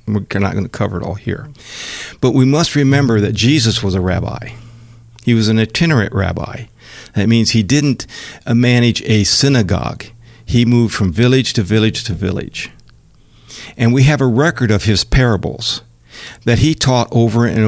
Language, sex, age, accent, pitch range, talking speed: English, male, 60-79, American, 105-125 Hz, 170 wpm